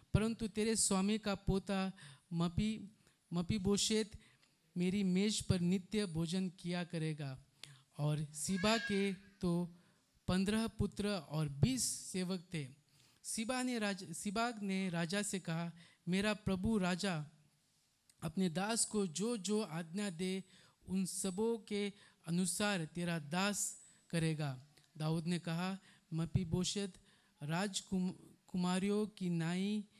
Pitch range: 165-200 Hz